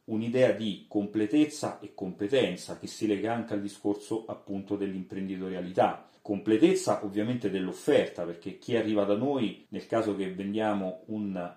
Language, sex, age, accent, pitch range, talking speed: Italian, male, 40-59, native, 95-115 Hz, 135 wpm